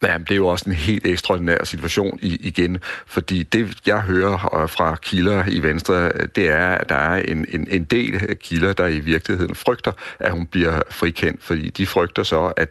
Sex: male